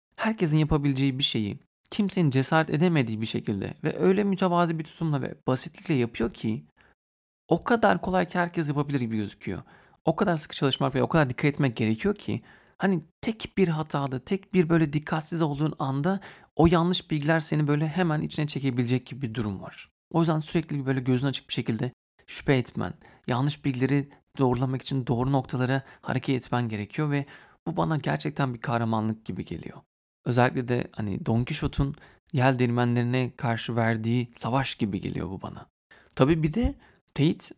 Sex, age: male, 40-59